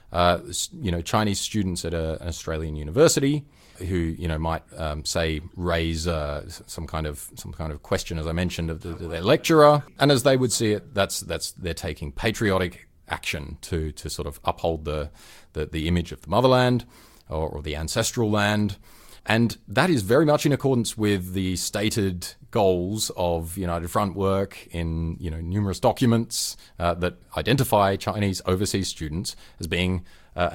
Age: 30-49